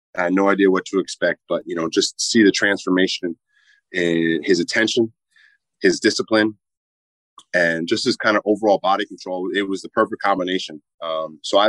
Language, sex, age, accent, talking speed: English, male, 30-49, American, 180 wpm